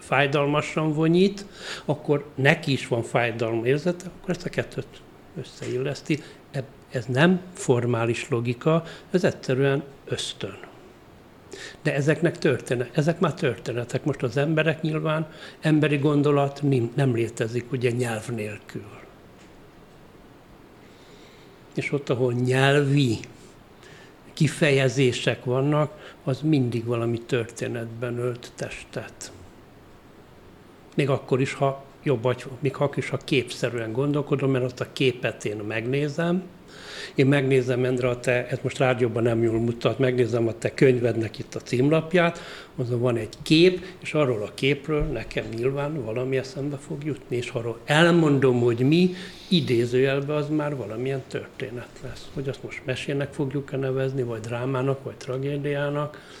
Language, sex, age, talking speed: Hungarian, male, 60-79, 130 wpm